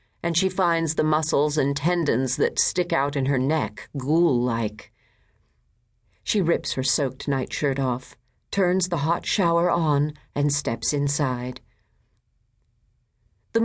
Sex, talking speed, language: female, 130 wpm, English